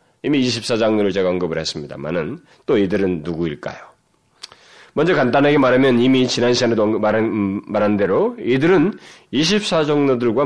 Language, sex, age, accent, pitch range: Korean, male, 40-59, native, 100-160 Hz